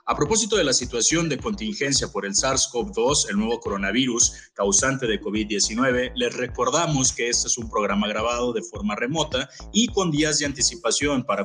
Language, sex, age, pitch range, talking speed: Spanish, male, 30-49, 120-195 Hz, 175 wpm